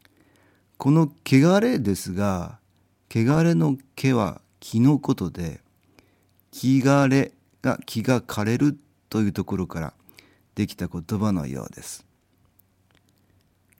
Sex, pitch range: male, 95-120 Hz